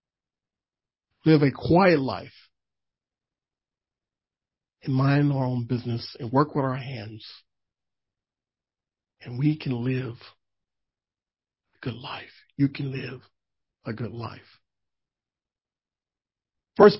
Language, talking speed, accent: English, 100 wpm, American